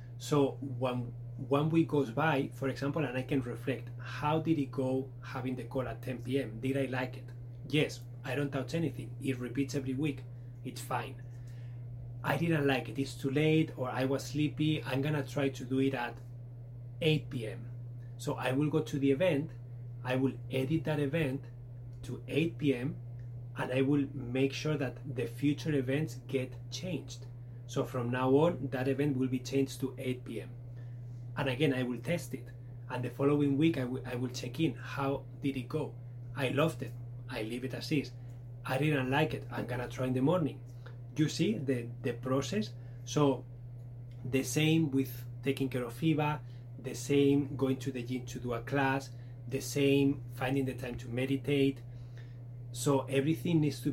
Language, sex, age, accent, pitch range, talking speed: English, male, 30-49, Spanish, 120-140 Hz, 185 wpm